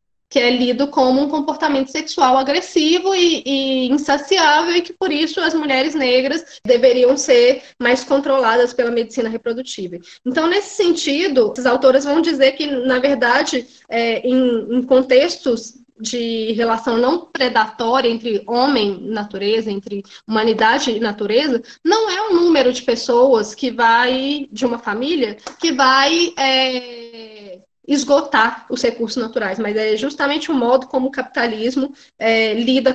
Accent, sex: Brazilian, female